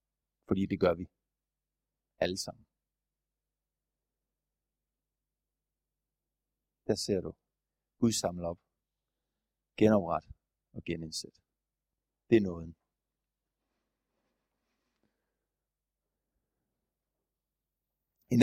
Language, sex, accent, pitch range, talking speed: Danish, male, native, 85-130 Hz, 60 wpm